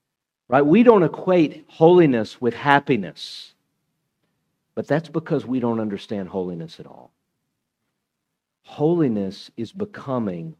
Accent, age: American, 50-69